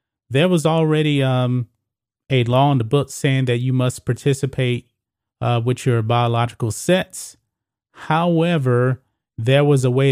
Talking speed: 140 wpm